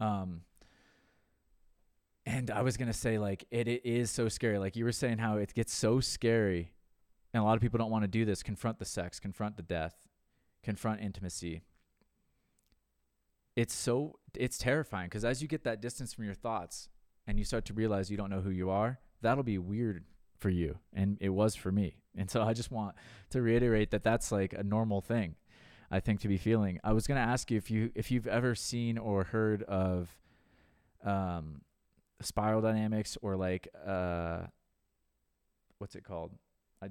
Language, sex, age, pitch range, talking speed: English, male, 20-39, 95-115 Hz, 190 wpm